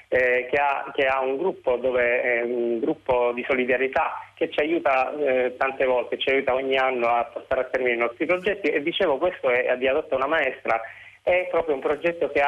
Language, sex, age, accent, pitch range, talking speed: Italian, male, 30-49, native, 120-160 Hz, 220 wpm